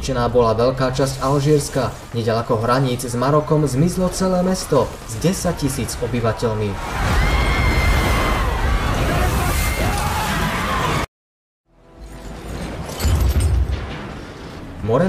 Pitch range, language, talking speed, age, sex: 110-150 Hz, Slovak, 70 wpm, 20-39, male